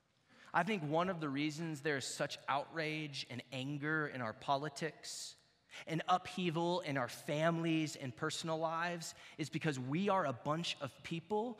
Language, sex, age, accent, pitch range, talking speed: English, male, 30-49, American, 130-195 Hz, 160 wpm